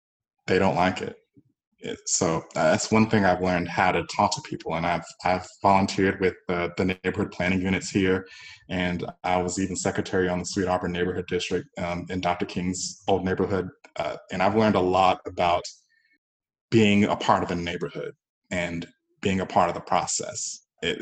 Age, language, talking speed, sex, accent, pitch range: 20-39, English, 185 wpm, male, American, 90-95 Hz